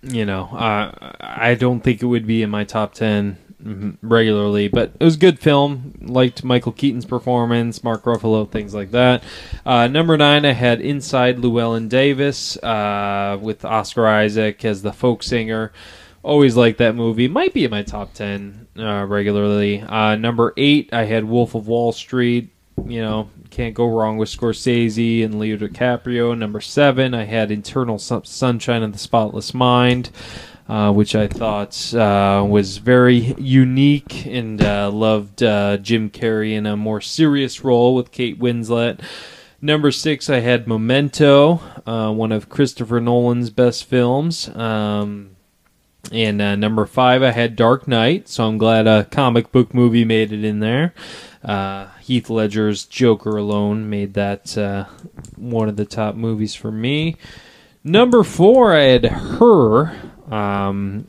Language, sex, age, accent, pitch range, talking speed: English, male, 20-39, American, 105-125 Hz, 160 wpm